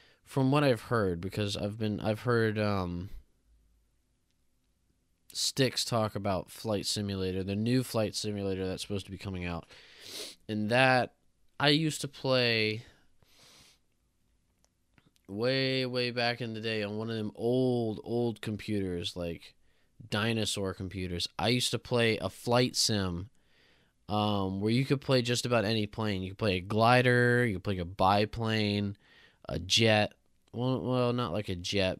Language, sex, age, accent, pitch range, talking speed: English, male, 20-39, American, 90-115 Hz, 155 wpm